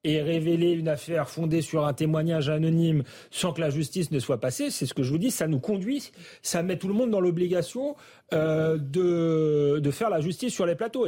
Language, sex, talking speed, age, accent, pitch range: French, male, 220 wpm, 40-59, French, 145-180 Hz